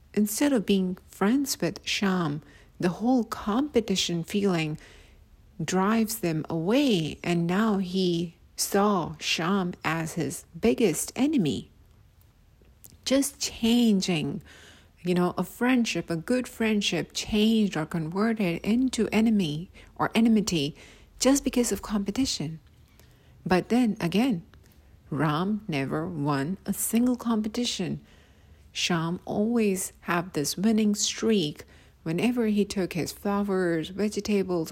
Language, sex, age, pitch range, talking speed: English, female, 50-69, 155-220 Hz, 110 wpm